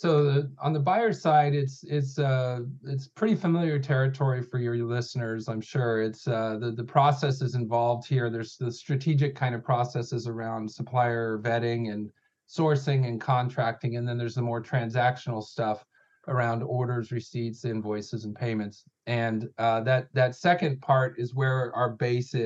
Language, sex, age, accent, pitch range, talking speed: English, male, 40-59, American, 115-140 Hz, 165 wpm